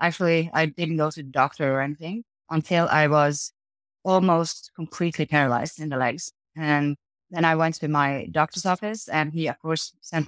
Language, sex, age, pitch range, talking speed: English, female, 20-39, 150-175 Hz, 180 wpm